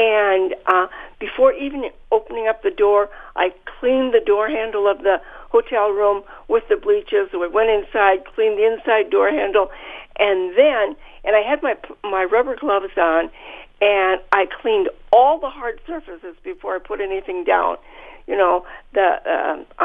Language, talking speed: English, 165 wpm